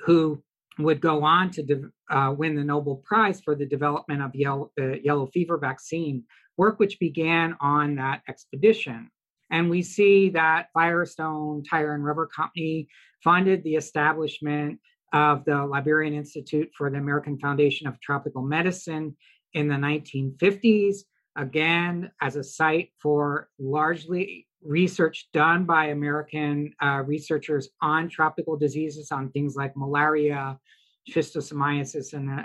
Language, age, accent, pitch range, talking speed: English, 50-69, American, 140-165 Hz, 135 wpm